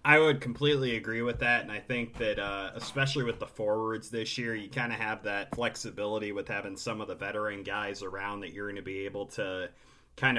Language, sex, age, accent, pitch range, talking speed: English, male, 30-49, American, 105-125 Hz, 225 wpm